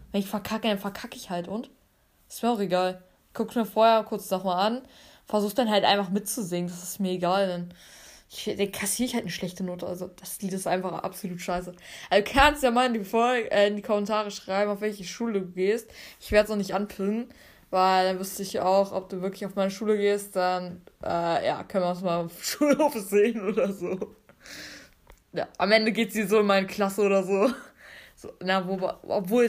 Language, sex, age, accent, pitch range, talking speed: German, female, 20-39, German, 190-235 Hz, 215 wpm